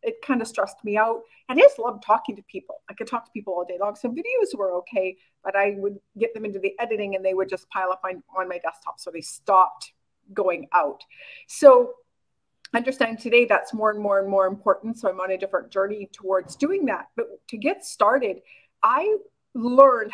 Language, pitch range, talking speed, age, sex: English, 205-275 Hz, 215 wpm, 40-59, female